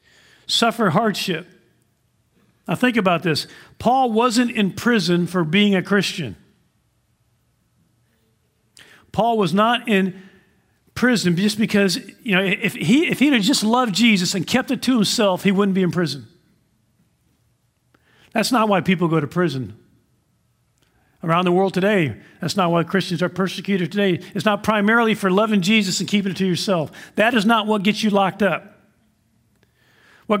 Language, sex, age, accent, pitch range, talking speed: English, male, 50-69, American, 185-225 Hz, 155 wpm